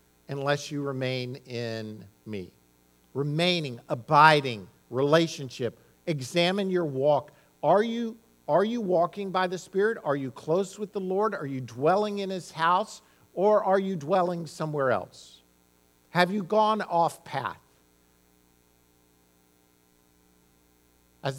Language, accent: English, American